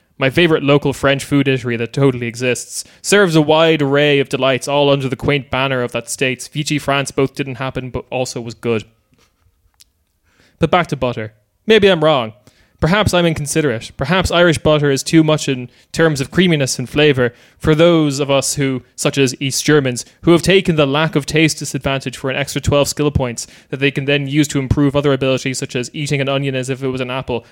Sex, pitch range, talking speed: male, 130-155 Hz, 210 wpm